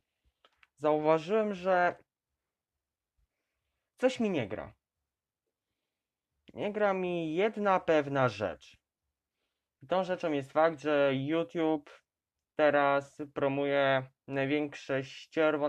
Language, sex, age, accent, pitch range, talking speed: Polish, male, 20-39, native, 130-160 Hz, 85 wpm